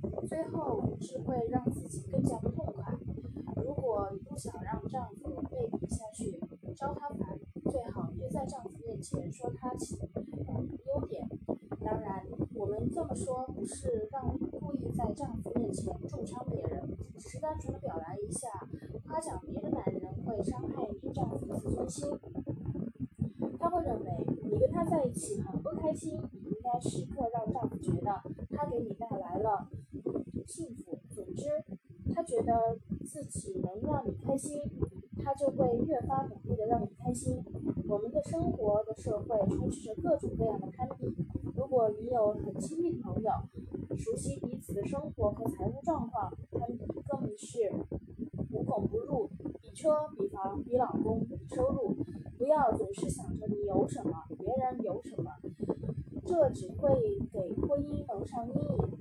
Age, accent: 20-39, native